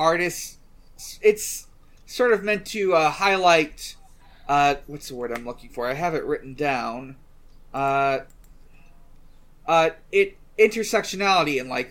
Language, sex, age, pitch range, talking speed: English, male, 30-49, 135-170 Hz, 125 wpm